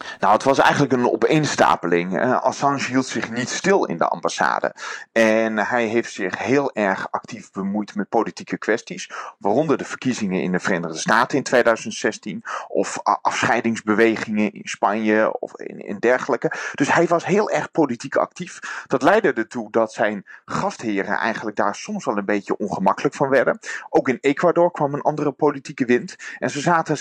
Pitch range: 105-145 Hz